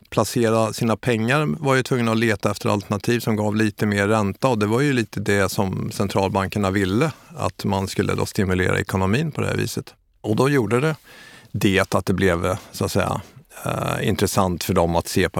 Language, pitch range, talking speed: Swedish, 95-115 Hz, 205 wpm